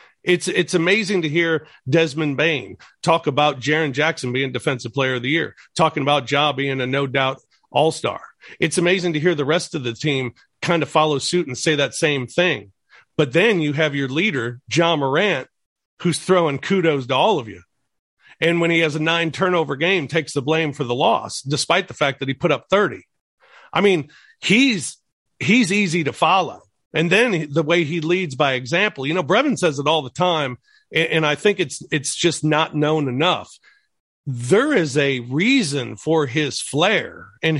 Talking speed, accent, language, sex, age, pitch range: 190 wpm, American, English, male, 40-59, 145-180 Hz